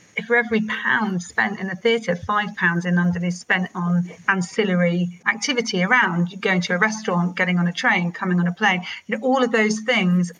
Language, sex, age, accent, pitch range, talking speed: English, female, 40-59, British, 180-215 Hz, 190 wpm